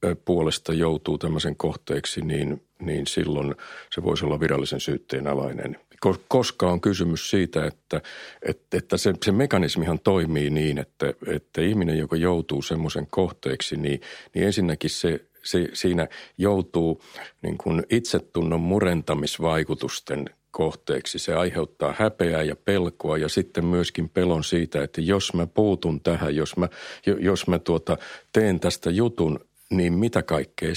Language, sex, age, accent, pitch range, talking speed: Finnish, male, 50-69, native, 80-95 Hz, 140 wpm